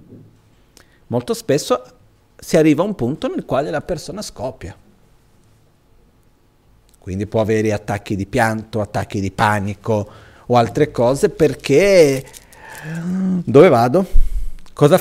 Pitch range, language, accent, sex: 115-165 Hz, Italian, native, male